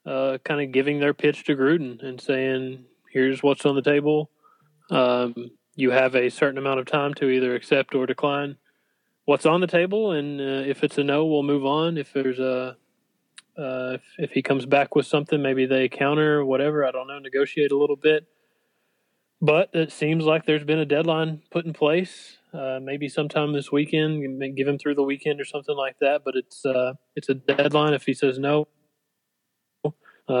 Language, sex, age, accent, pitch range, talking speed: English, male, 20-39, American, 135-150 Hz, 200 wpm